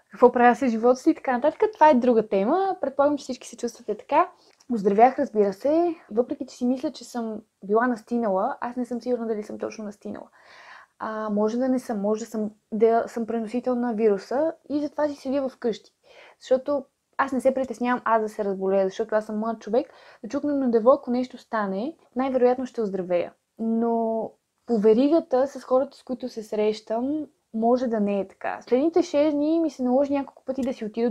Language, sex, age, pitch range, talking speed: Bulgarian, female, 20-39, 220-275 Hz, 205 wpm